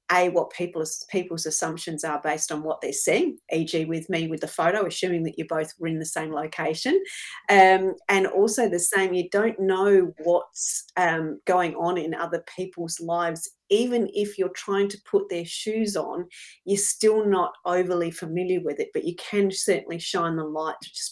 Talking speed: 190 wpm